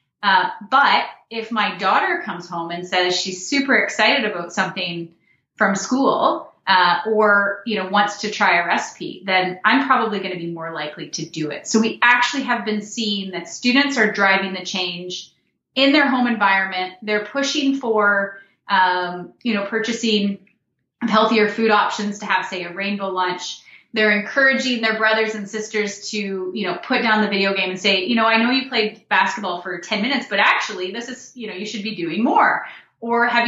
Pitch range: 185-240 Hz